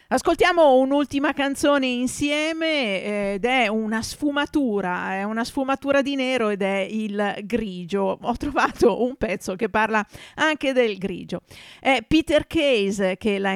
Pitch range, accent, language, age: 205-270 Hz, native, Italian, 40-59